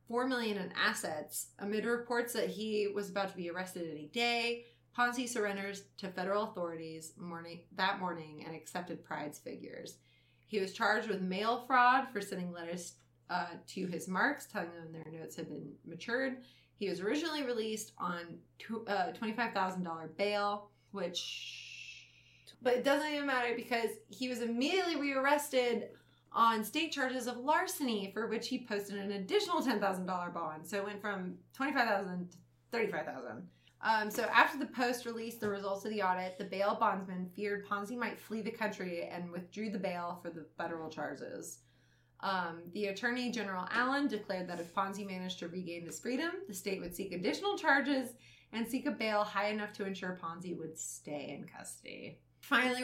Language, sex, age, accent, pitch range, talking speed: English, female, 30-49, American, 175-235 Hz, 170 wpm